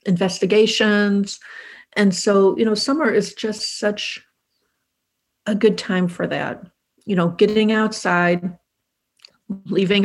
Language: English